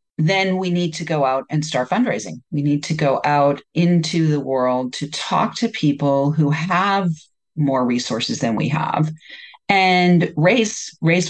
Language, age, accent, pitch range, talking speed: English, 40-59, American, 145-190 Hz, 165 wpm